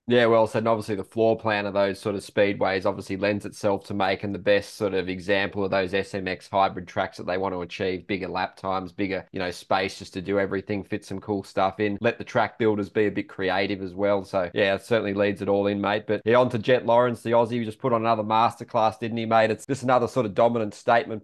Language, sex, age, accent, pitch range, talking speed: English, male, 20-39, Australian, 105-120 Hz, 255 wpm